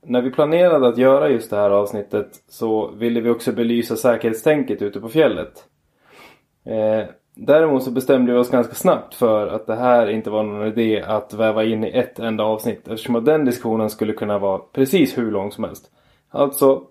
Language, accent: Swedish, native